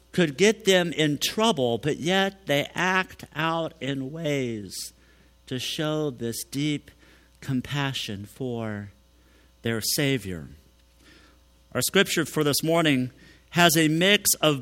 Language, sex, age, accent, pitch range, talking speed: English, male, 50-69, American, 105-160 Hz, 120 wpm